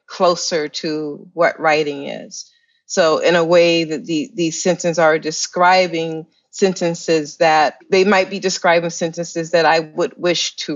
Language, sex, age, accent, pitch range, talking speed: English, female, 40-59, American, 160-195 Hz, 150 wpm